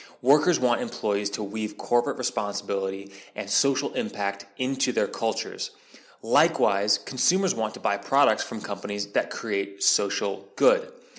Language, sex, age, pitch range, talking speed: English, male, 30-49, 105-155 Hz, 135 wpm